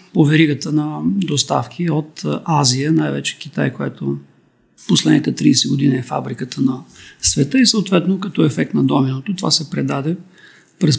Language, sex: English, male